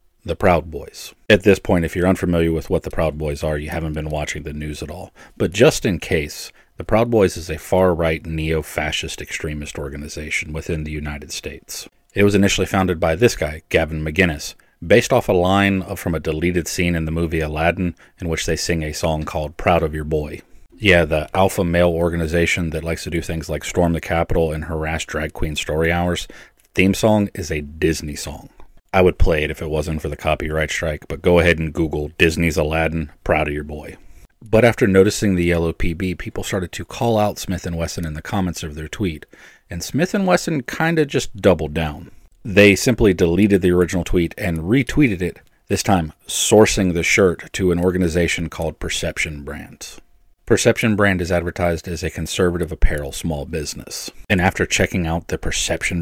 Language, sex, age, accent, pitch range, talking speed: English, male, 30-49, American, 80-95 Hz, 195 wpm